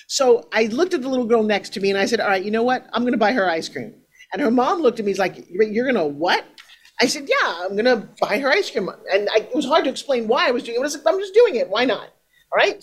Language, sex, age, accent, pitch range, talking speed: English, male, 40-59, American, 195-285 Hz, 335 wpm